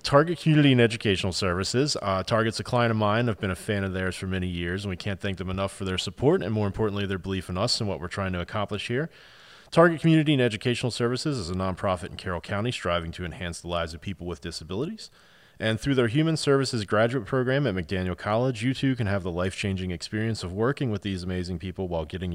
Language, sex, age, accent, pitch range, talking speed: English, male, 30-49, American, 95-125 Hz, 235 wpm